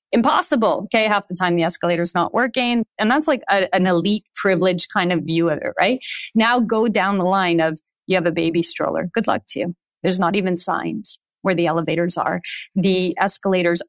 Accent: American